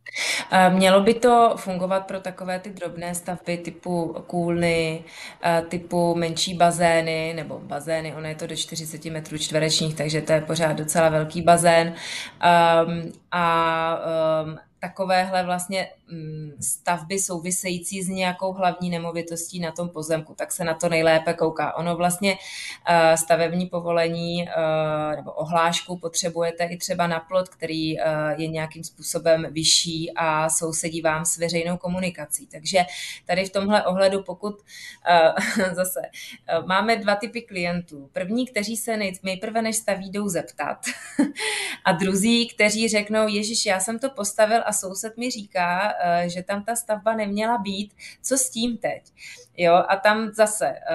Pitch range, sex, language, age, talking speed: 165-195 Hz, female, Czech, 20-39, 140 wpm